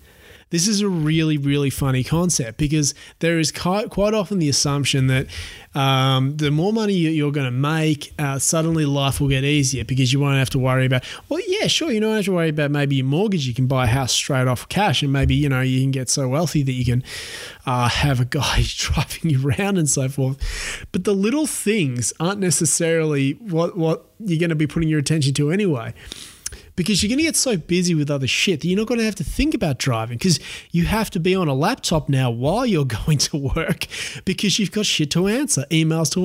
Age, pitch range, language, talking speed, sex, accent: 20-39, 135-195 Hz, English, 225 wpm, male, Australian